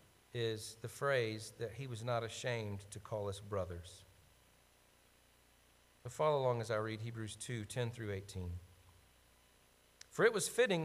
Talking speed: 150 wpm